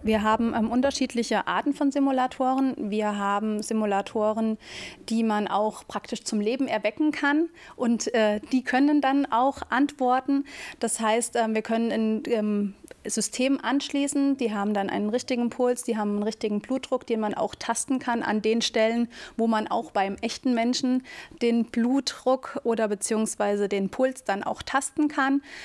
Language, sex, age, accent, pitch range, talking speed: German, female, 30-49, German, 215-255 Hz, 160 wpm